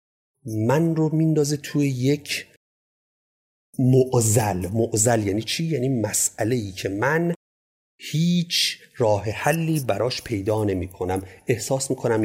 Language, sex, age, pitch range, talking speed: Persian, male, 40-59, 100-135 Hz, 110 wpm